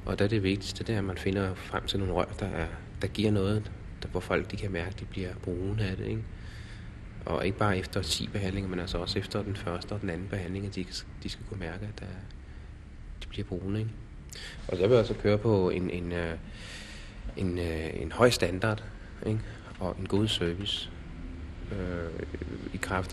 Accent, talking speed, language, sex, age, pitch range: native, 205 wpm, Danish, male, 30-49, 85-100 Hz